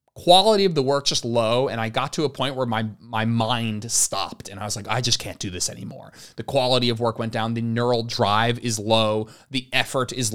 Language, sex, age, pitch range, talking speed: English, male, 30-49, 120-180 Hz, 240 wpm